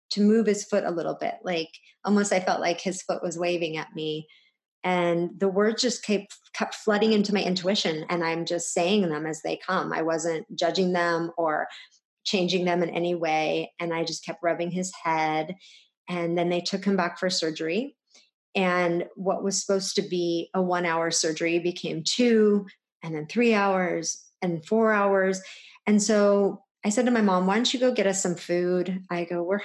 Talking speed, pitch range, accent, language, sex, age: 200 wpm, 170-200 Hz, American, English, female, 30-49